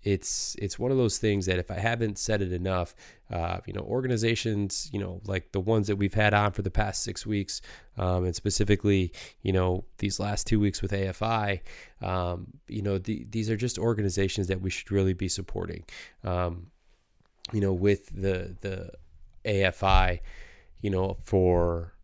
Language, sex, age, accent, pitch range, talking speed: English, male, 20-39, American, 90-105 Hz, 175 wpm